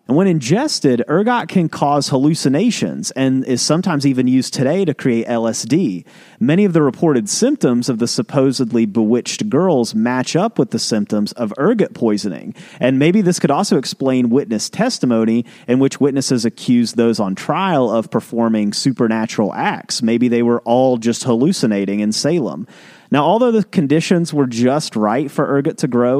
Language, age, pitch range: English, 30-49, 120-160 Hz